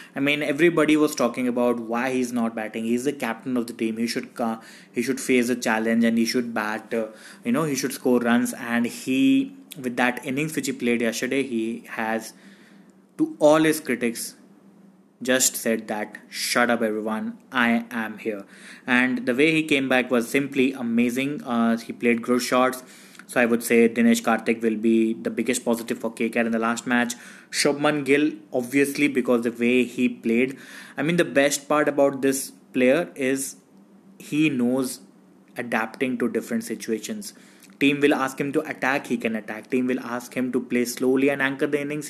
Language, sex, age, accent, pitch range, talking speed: English, male, 20-39, Indian, 115-150 Hz, 185 wpm